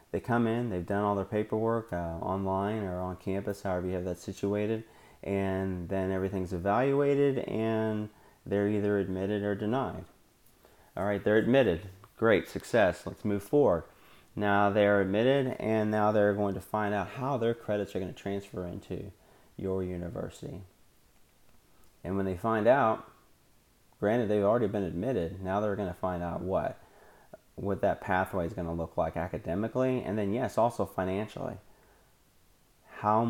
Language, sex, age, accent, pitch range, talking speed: English, male, 30-49, American, 90-110 Hz, 160 wpm